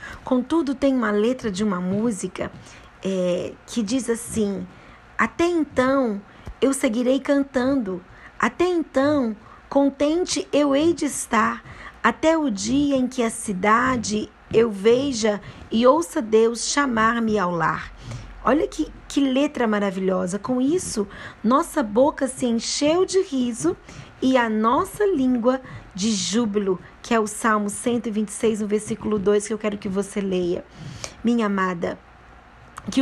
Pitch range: 205-260 Hz